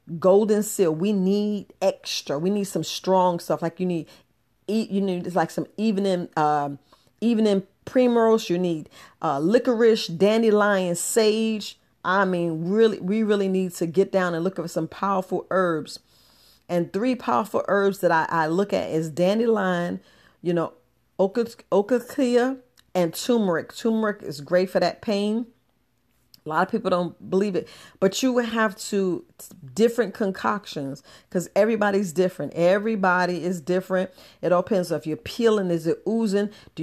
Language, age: English, 40-59